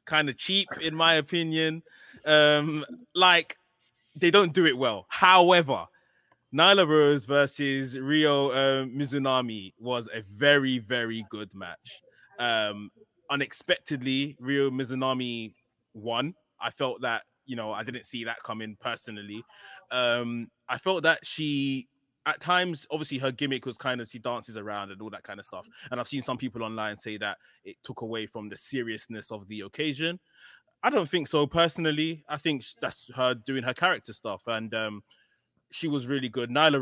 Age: 20-39